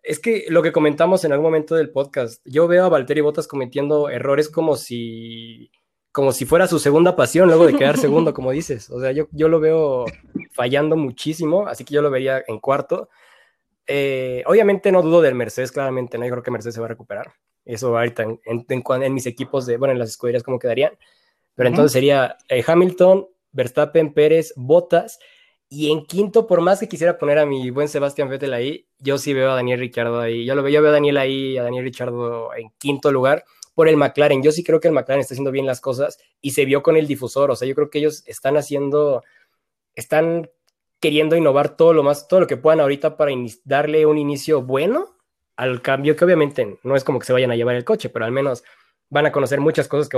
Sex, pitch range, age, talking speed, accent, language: male, 130-155 Hz, 20-39, 225 wpm, Mexican, Spanish